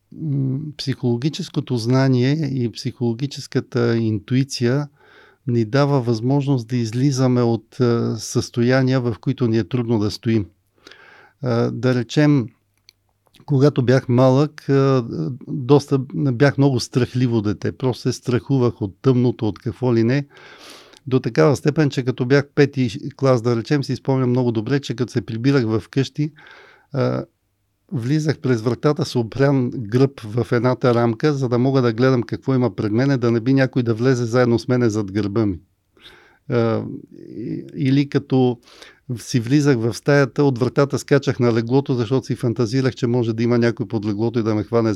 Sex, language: male, Bulgarian